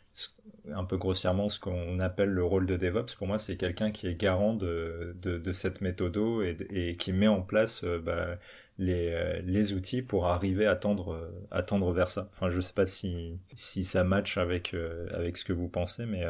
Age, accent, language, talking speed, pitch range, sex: 30-49, French, French, 215 wpm, 90-100 Hz, male